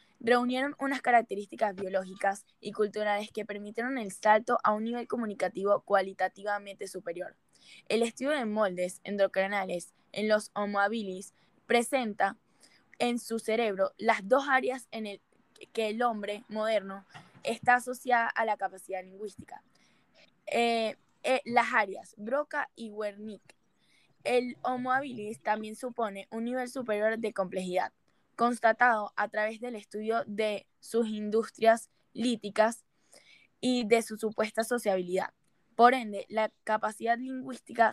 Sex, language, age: female, Japanese, 10-29